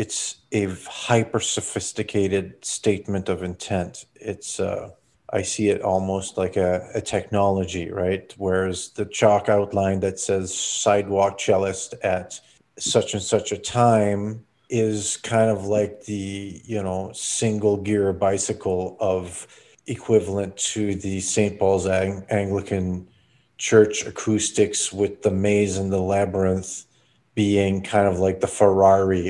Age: 40-59